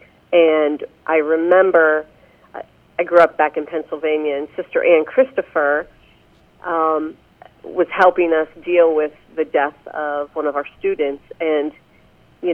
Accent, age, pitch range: American, 40-59, 150-180 Hz